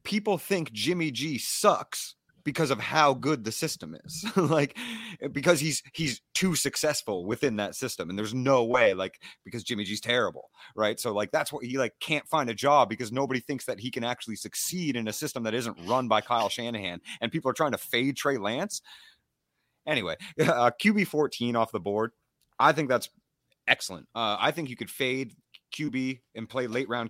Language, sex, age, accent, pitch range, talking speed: English, male, 30-49, American, 110-150 Hz, 195 wpm